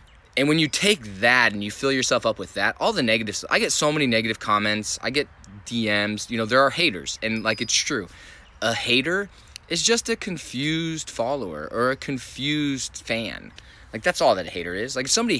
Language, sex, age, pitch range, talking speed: English, male, 20-39, 95-130 Hz, 210 wpm